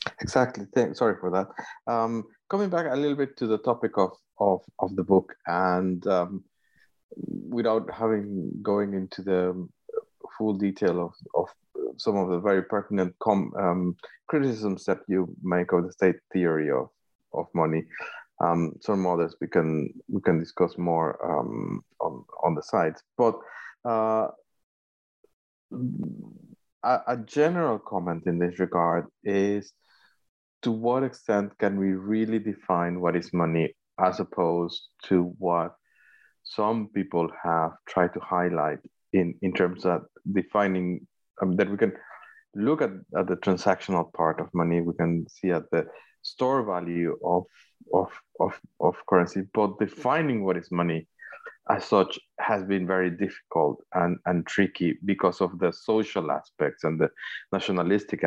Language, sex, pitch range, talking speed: English, male, 85-110 Hz, 145 wpm